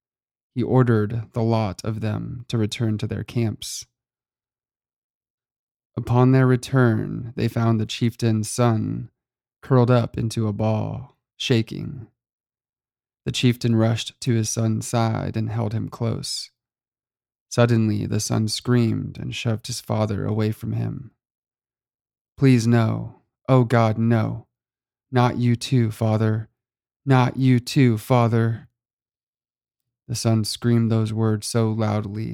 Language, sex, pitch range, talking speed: English, male, 110-120 Hz, 125 wpm